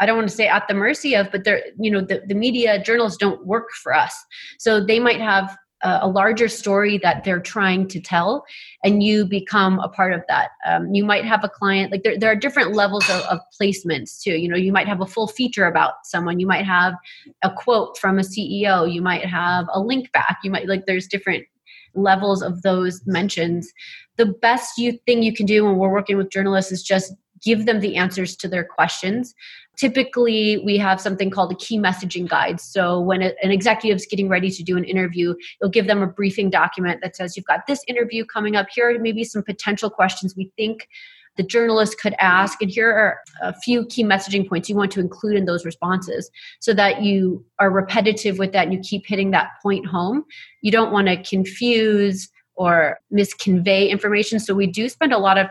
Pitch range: 185-220 Hz